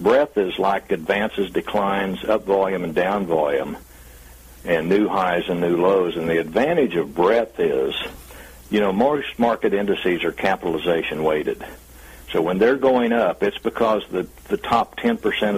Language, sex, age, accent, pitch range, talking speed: English, male, 60-79, American, 65-100 Hz, 160 wpm